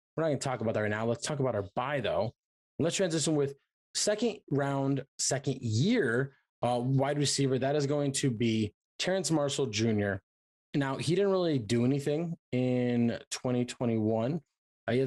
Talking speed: 165 wpm